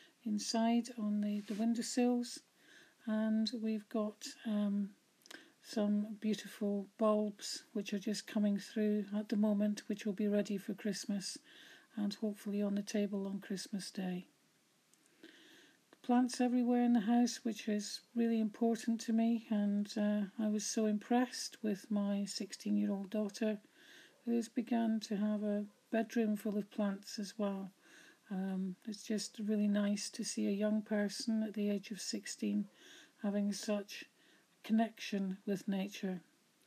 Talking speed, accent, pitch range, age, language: 145 wpm, British, 205-230 Hz, 50-69, English